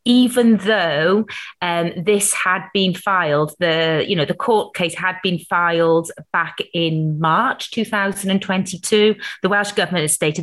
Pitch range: 160-205 Hz